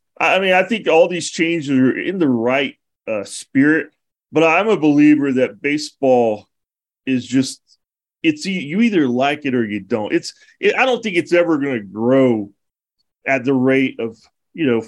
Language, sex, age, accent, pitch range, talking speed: English, male, 30-49, American, 120-160 Hz, 180 wpm